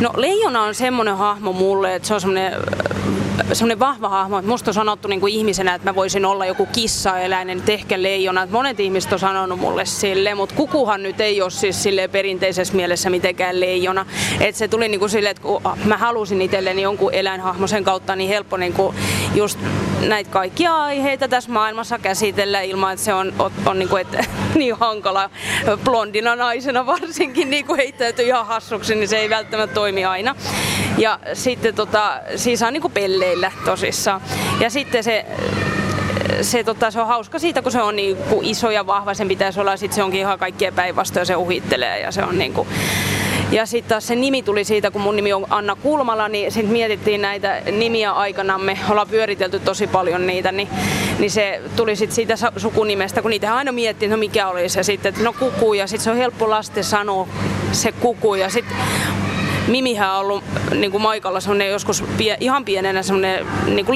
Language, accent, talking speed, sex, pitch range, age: Finnish, native, 180 wpm, female, 195-230 Hz, 30-49